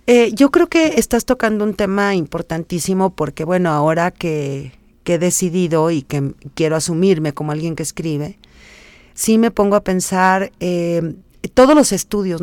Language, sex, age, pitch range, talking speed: Spanish, female, 40-59, 150-185 Hz, 160 wpm